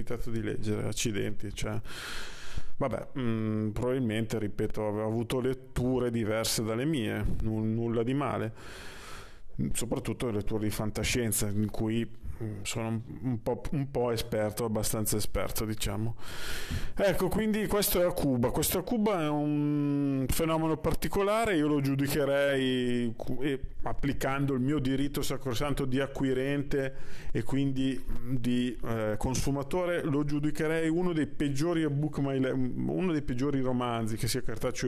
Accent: native